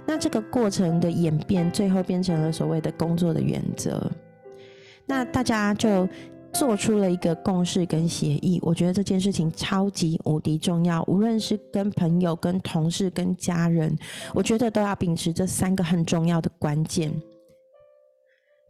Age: 30-49